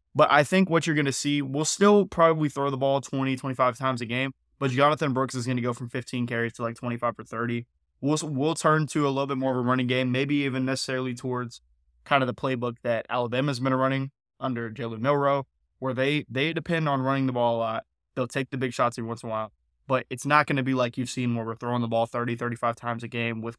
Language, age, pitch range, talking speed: English, 20-39, 120-145 Hz, 255 wpm